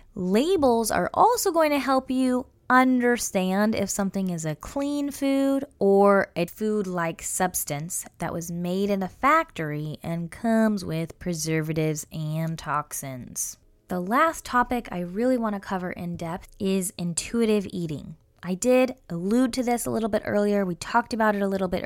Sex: female